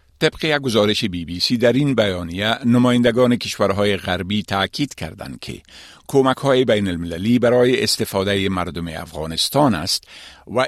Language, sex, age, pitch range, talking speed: Persian, male, 50-69, 90-120 Hz, 140 wpm